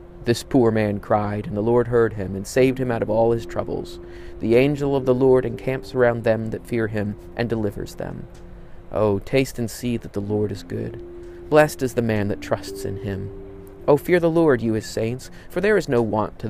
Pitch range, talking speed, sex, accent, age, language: 100-130 Hz, 220 wpm, male, American, 30-49, English